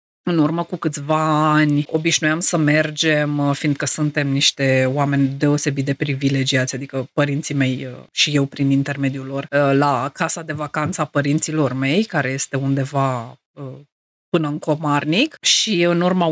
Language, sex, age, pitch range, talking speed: Romanian, female, 30-49, 150-200 Hz, 145 wpm